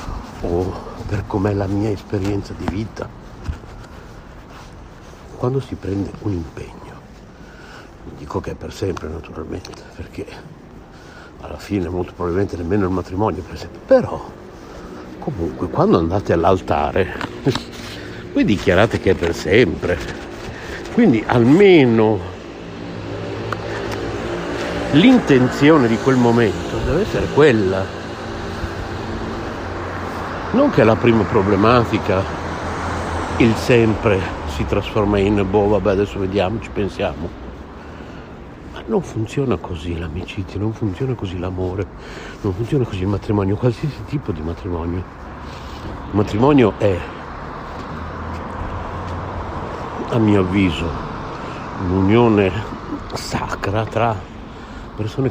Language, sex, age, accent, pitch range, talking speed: Italian, male, 60-79, native, 85-110 Hz, 105 wpm